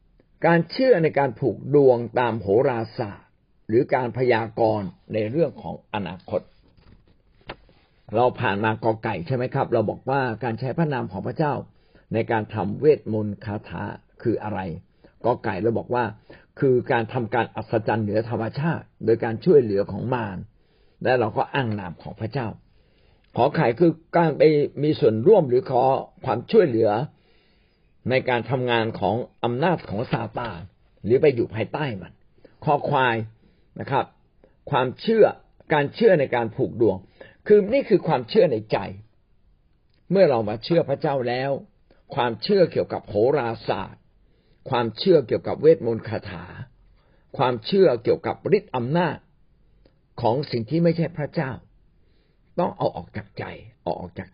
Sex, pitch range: male, 110-140 Hz